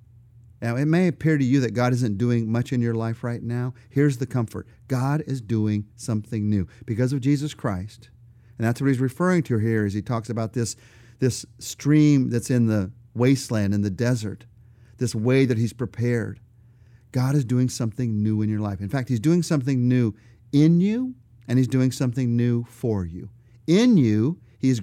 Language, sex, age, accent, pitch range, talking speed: English, male, 40-59, American, 115-140 Hz, 195 wpm